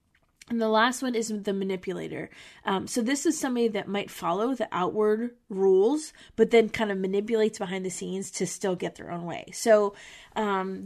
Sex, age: female, 20-39